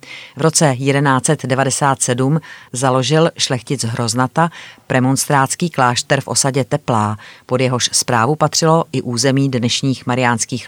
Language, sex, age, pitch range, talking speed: Czech, female, 30-49, 125-150 Hz, 105 wpm